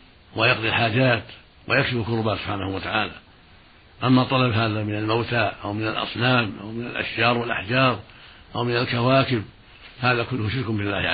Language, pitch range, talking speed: Arabic, 110-130 Hz, 135 wpm